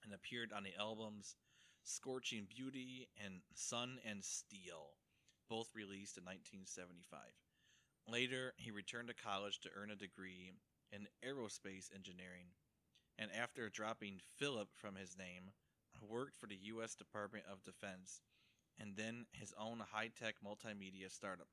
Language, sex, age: English, male, 30-49